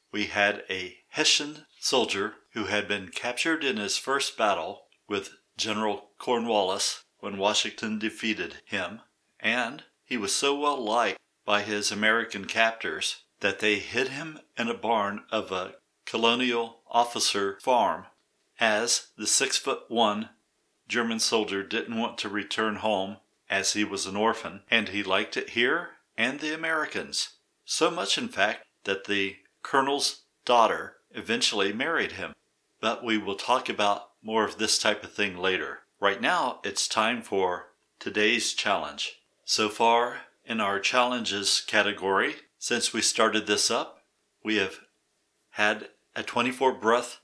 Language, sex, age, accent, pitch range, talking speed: English, male, 50-69, American, 100-120 Hz, 140 wpm